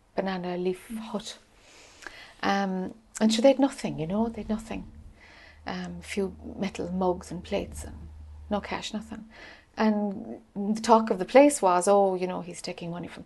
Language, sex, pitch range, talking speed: English, female, 175-245 Hz, 170 wpm